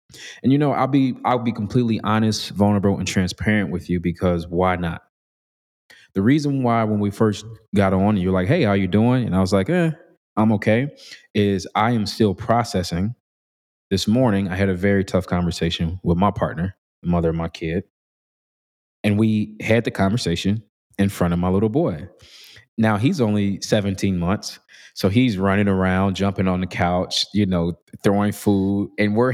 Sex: male